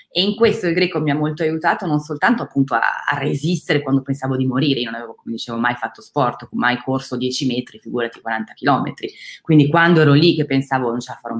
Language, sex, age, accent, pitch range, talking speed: Italian, female, 20-39, native, 130-160 Hz, 230 wpm